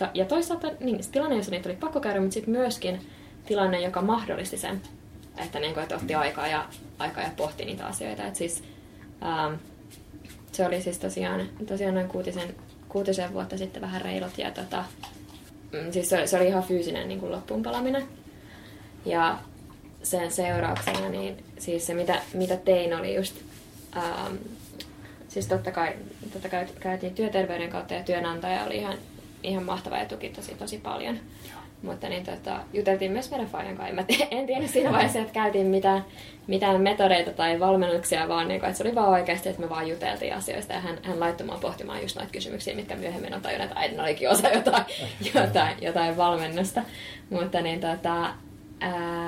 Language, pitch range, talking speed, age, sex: Finnish, 150-195 Hz, 165 wpm, 20-39, female